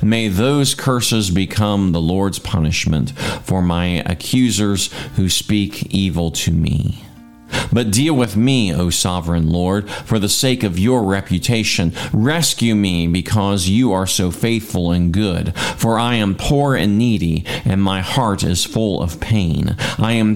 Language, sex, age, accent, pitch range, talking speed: English, male, 40-59, American, 90-115 Hz, 155 wpm